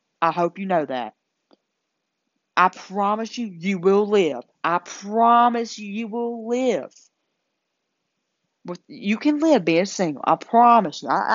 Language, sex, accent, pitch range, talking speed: English, female, American, 195-255 Hz, 130 wpm